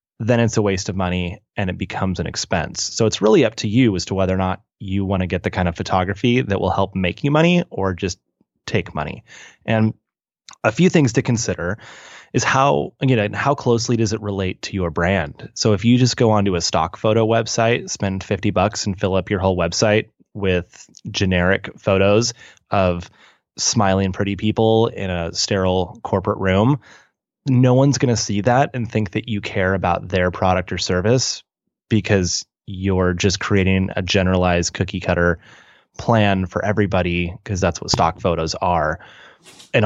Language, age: English, 20-39